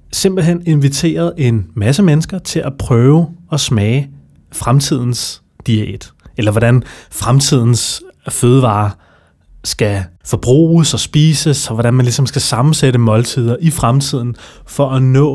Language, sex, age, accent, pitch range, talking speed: Danish, male, 30-49, native, 110-145 Hz, 125 wpm